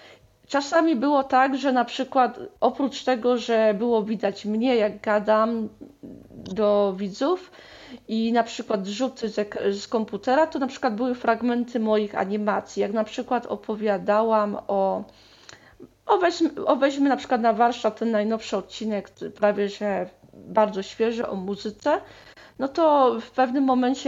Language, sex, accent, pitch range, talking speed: Polish, female, native, 210-255 Hz, 135 wpm